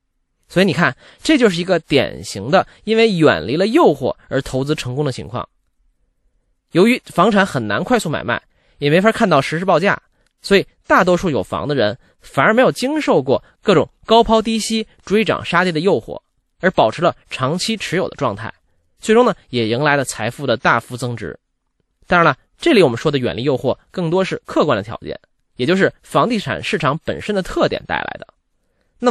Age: 20-39